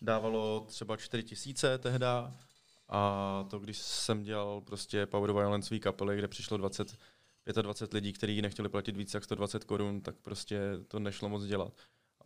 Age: 20-39